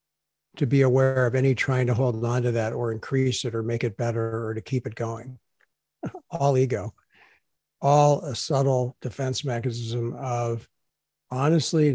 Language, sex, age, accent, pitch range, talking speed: English, male, 60-79, American, 120-155 Hz, 160 wpm